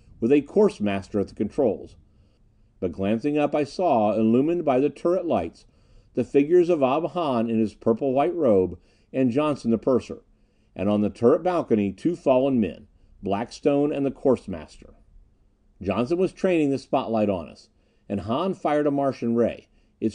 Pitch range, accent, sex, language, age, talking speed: 100-145 Hz, American, male, English, 50-69, 175 wpm